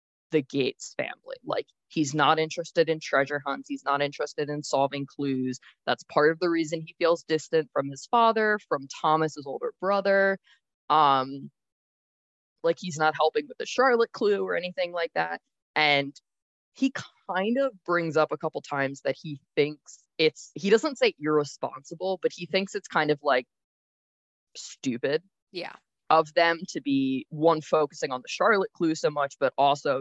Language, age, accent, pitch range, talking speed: English, 20-39, American, 140-190 Hz, 170 wpm